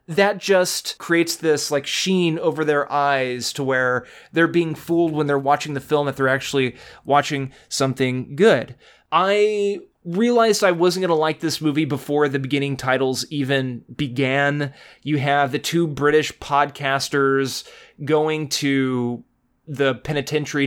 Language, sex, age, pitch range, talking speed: English, male, 20-39, 130-160 Hz, 145 wpm